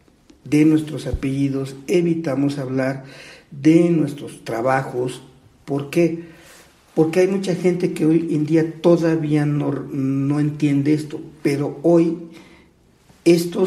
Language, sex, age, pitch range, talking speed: Spanish, male, 50-69, 135-165 Hz, 115 wpm